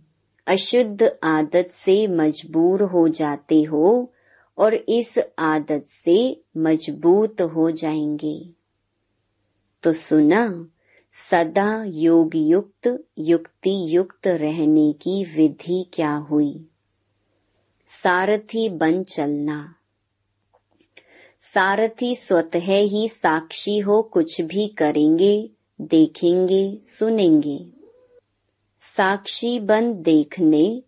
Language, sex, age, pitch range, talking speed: Hindi, male, 30-49, 155-200 Hz, 80 wpm